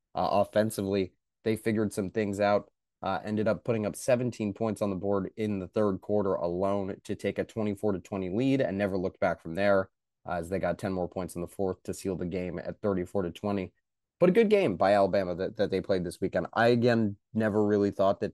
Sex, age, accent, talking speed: male, 20-39, American, 230 wpm